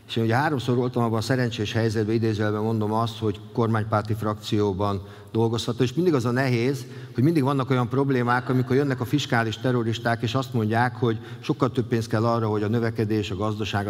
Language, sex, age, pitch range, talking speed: Hungarian, male, 50-69, 110-130 Hz, 195 wpm